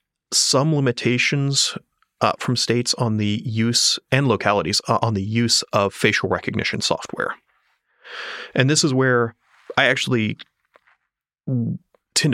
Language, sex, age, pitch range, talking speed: English, male, 30-49, 110-130 Hz, 120 wpm